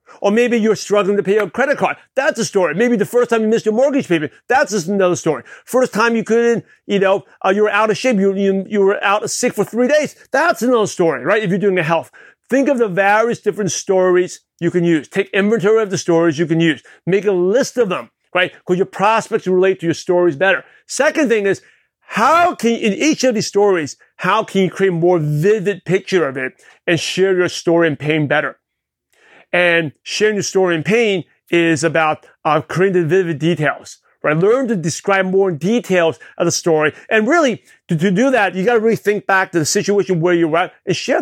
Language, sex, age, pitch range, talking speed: English, male, 40-59, 175-220 Hz, 225 wpm